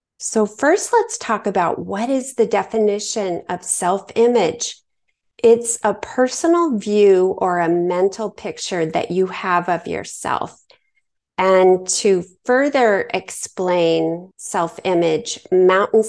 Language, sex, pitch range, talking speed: English, female, 185-230 Hz, 120 wpm